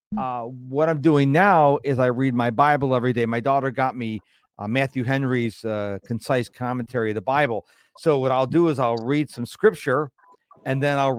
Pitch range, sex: 120-155 Hz, male